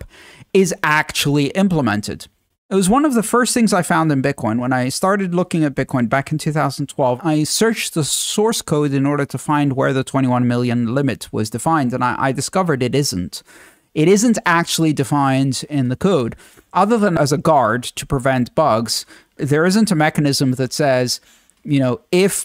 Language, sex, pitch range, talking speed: English, male, 140-185 Hz, 180 wpm